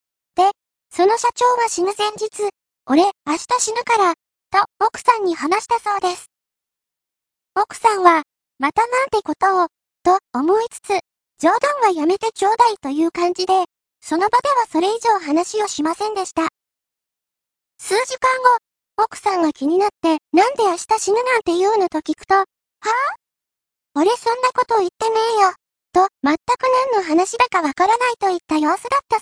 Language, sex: Japanese, male